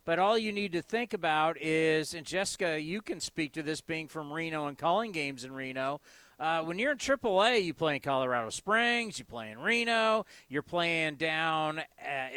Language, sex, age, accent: English, male, 40-59, American